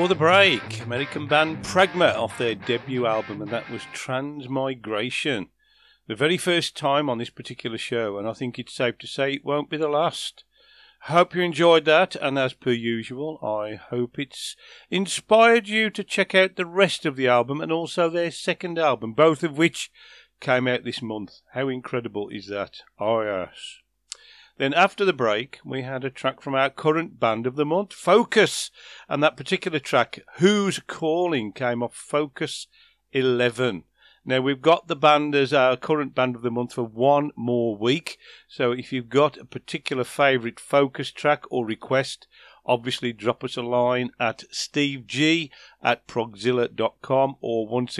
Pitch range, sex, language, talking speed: 120-155 Hz, male, English, 170 wpm